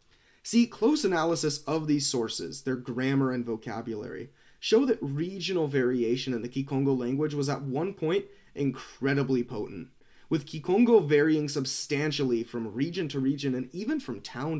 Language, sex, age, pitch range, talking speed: English, male, 30-49, 120-160 Hz, 150 wpm